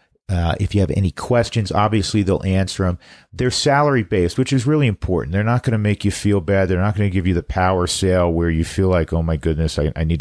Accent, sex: American, male